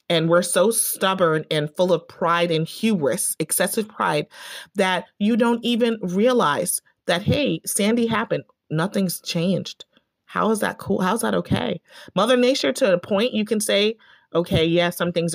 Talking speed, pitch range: 165 wpm, 165-205 Hz